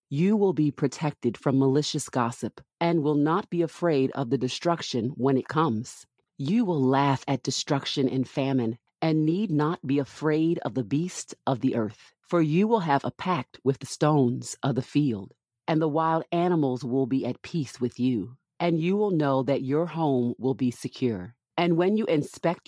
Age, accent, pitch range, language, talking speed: 40-59, American, 130-160 Hz, English, 190 wpm